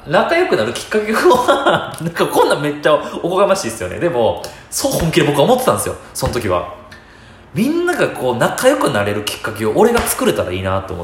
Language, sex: Japanese, male